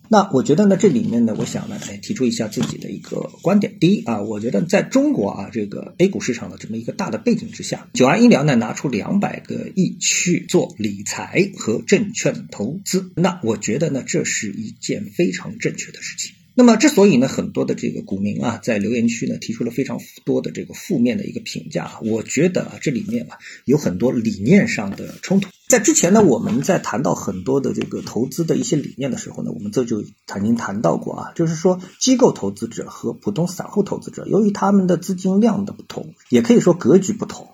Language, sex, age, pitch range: Chinese, male, 50-69, 165-225 Hz